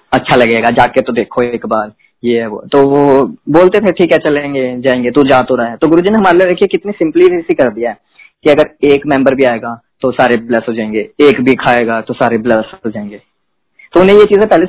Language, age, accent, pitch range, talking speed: Hindi, 20-39, native, 125-150 Hz, 235 wpm